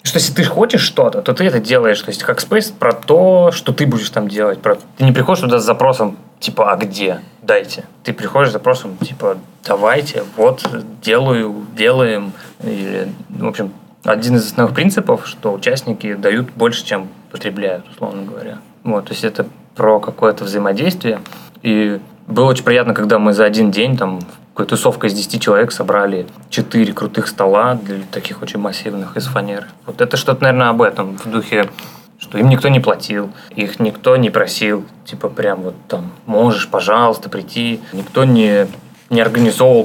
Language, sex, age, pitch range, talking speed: Russian, male, 20-39, 105-140 Hz, 170 wpm